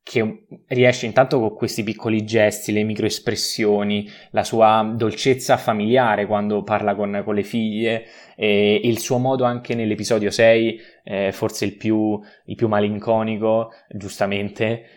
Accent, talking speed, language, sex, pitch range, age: native, 130 wpm, Italian, male, 105-120 Hz, 20-39